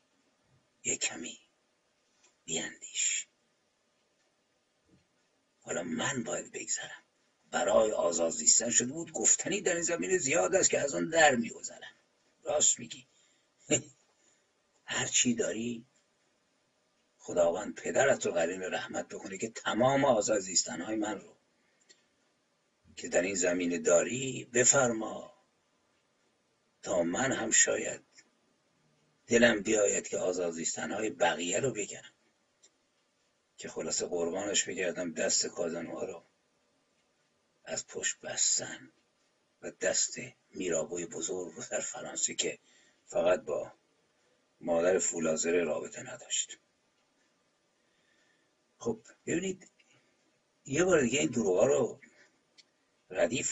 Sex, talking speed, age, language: male, 100 wpm, 50-69, Persian